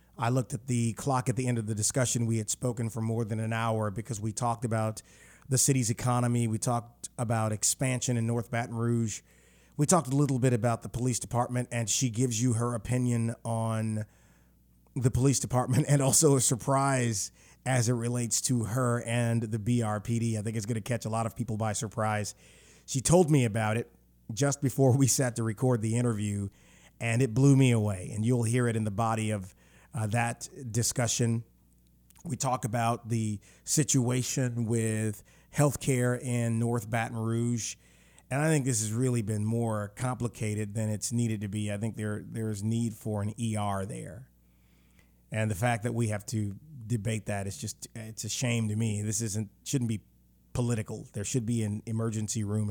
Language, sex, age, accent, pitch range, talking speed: English, male, 30-49, American, 110-125 Hz, 190 wpm